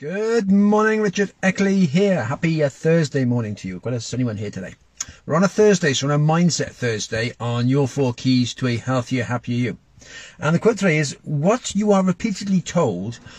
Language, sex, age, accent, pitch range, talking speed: English, male, 50-69, British, 145-200 Hz, 195 wpm